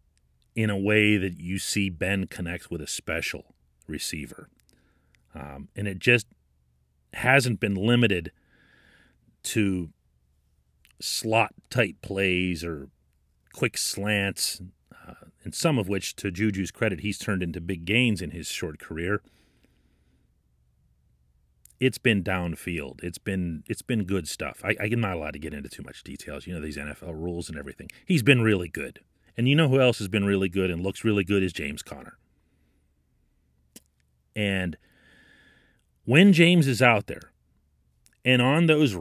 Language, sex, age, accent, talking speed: English, male, 40-59, American, 150 wpm